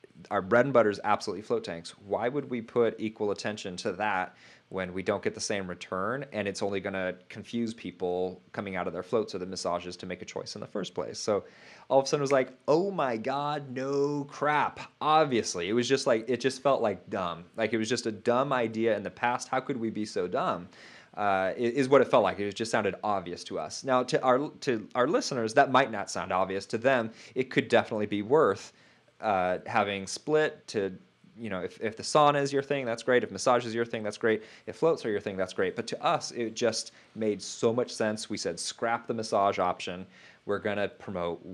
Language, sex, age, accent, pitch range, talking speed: English, male, 30-49, American, 95-130 Hz, 235 wpm